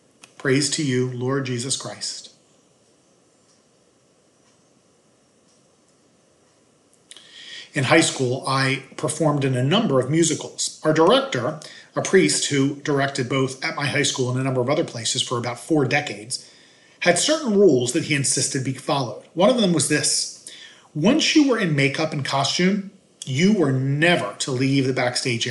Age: 40-59